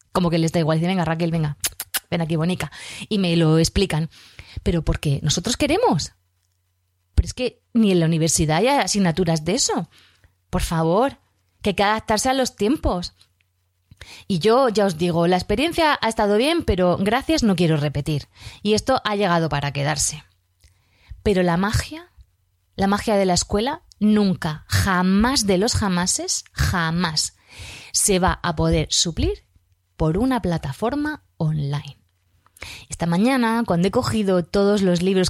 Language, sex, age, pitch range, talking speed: Spanish, female, 20-39, 150-210 Hz, 155 wpm